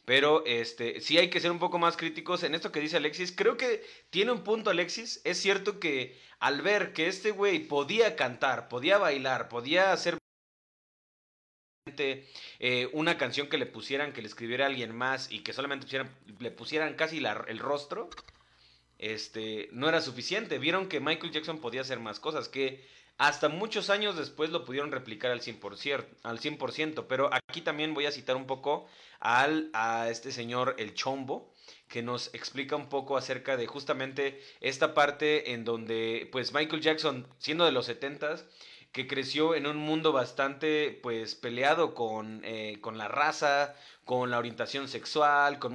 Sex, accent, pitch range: male, Mexican, 125-165 Hz